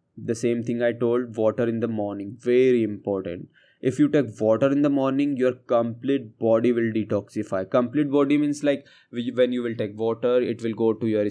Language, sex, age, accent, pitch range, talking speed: English, male, 20-39, Indian, 115-130 Hz, 195 wpm